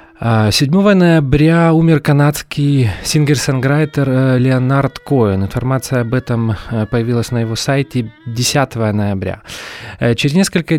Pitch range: 110-140 Hz